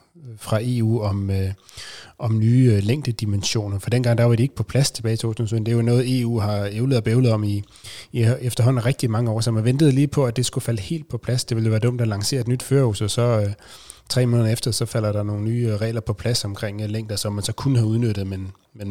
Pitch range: 105-125 Hz